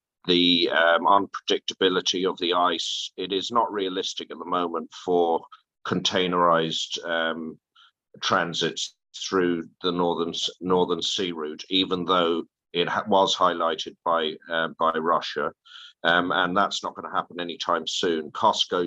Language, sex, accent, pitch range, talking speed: English, male, British, 80-90 Hz, 135 wpm